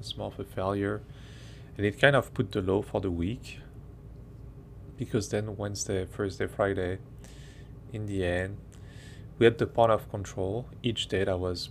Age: 20-39